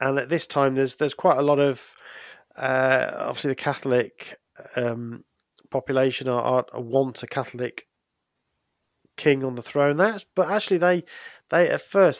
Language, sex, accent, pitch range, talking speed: English, male, British, 120-140 Hz, 160 wpm